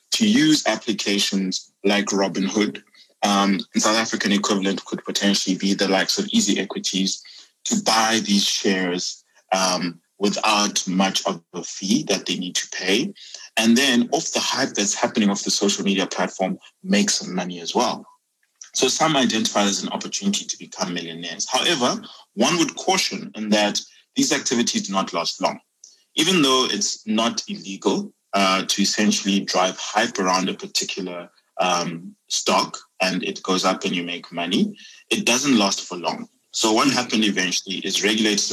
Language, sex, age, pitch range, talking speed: English, male, 20-39, 95-120 Hz, 160 wpm